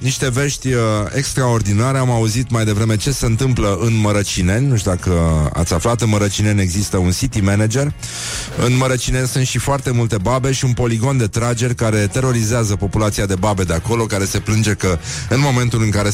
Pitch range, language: 100-130 Hz, Romanian